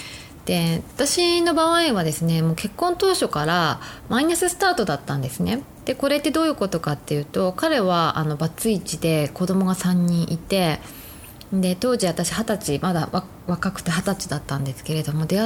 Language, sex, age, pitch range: Japanese, female, 20-39, 155-225 Hz